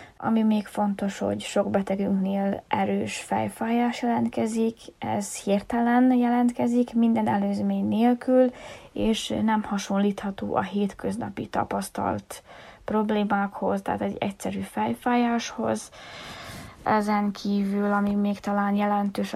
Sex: female